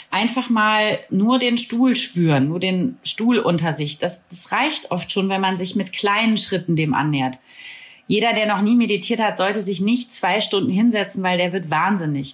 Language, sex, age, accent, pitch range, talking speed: German, female, 30-49, German, 180-220 Hz, 195 wpm